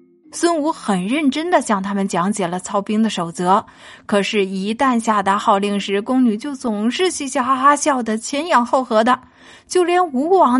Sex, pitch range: female, 205-290 Hz